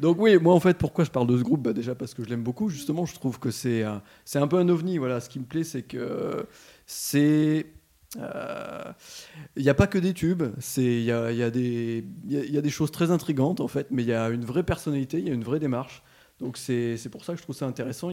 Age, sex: 30-49, male